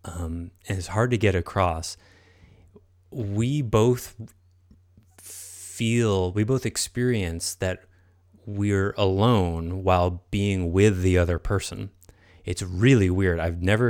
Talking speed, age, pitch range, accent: 115 wpm, 20-39, 90-110 Hz, American